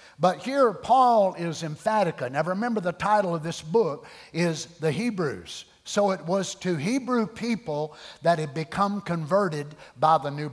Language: English